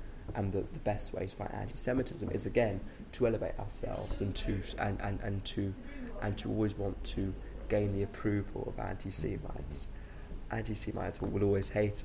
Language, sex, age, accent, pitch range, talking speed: English, male, 20-39, British, 95-110 Hz, 165 wpm